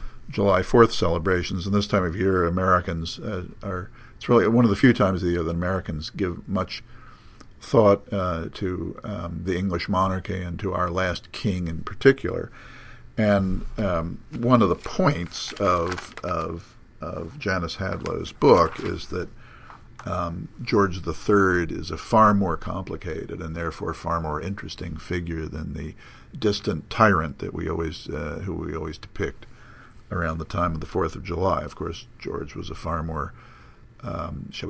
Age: 50-69